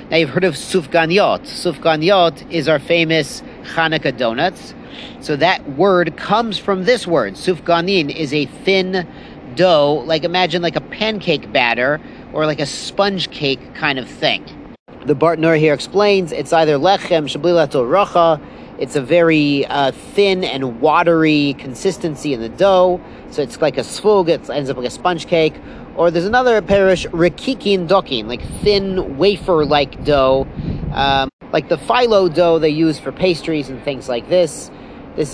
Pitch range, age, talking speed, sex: 145-185 Hz, 40-59, 155 wpm, male